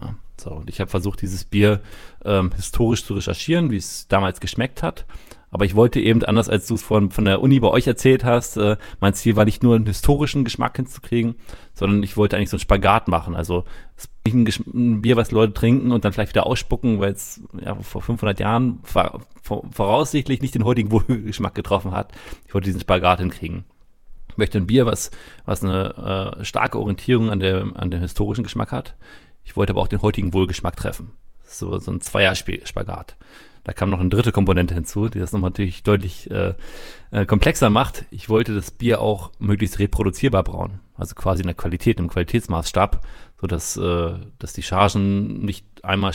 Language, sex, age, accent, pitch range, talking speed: German, male, 30-49, German, 95-115 Hz, 190 wpm